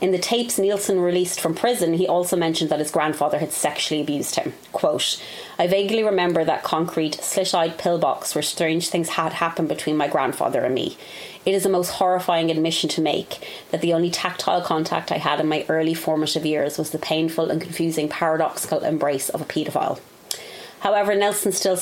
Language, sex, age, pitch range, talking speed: English, female, 30-49, 155-185 Hz, 185 wpm